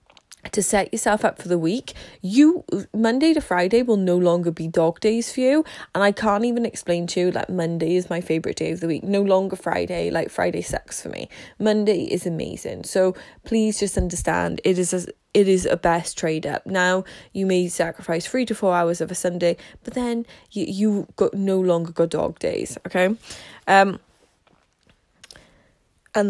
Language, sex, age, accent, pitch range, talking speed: English, female, 10-29, British, 170-215 Hz, 185 wpm